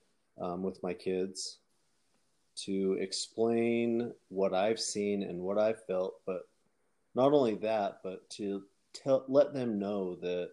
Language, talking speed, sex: English, 135 wpm, male